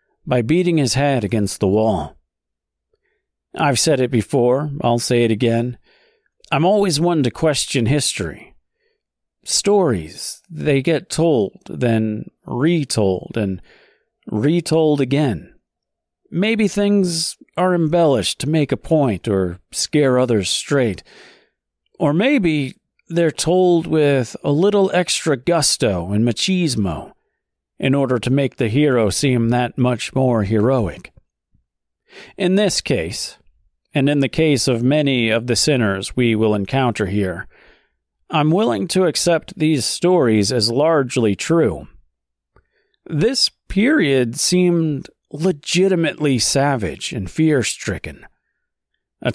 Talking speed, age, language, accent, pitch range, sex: 120 wpm, 40-59, English, American, 115-160 Hz, male